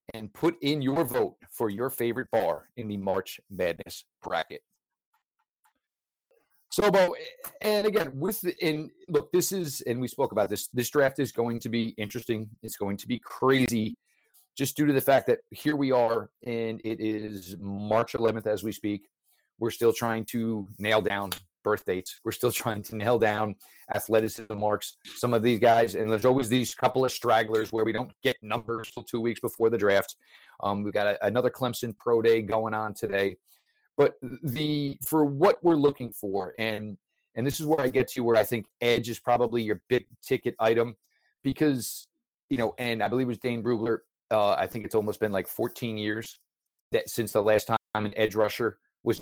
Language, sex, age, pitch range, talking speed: English, male, 40-59, 110-130 Hz, 195 wpm